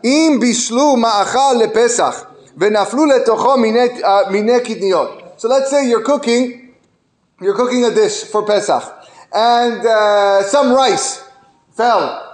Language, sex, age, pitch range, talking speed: English, male, 30-49, 225-305 Hz, 80 wpm